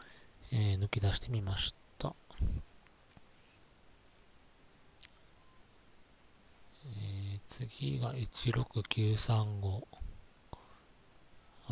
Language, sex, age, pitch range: Japanese, male, 40-59, 100-120 Hz